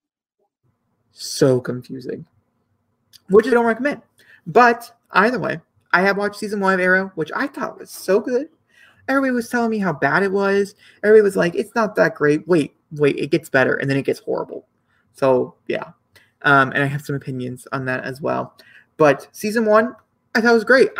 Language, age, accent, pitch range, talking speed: English, 30-49, American, 135-215 Hz, 190 wpm